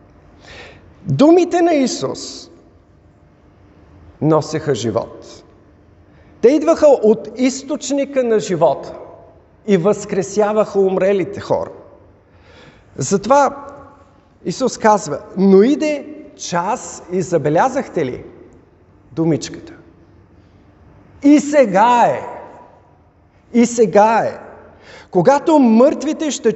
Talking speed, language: 75 wpm, Bulgarian